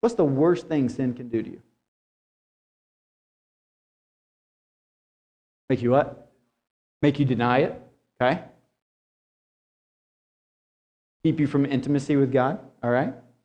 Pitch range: 120-150 Hz